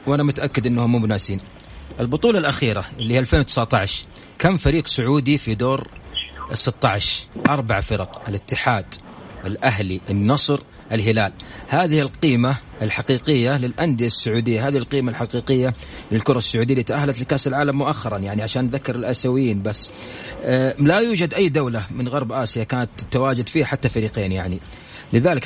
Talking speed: 135 wpm